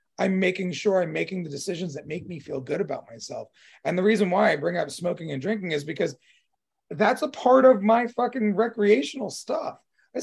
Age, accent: 30-49, American